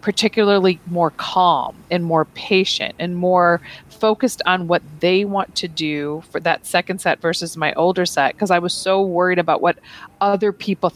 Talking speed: 175 wpm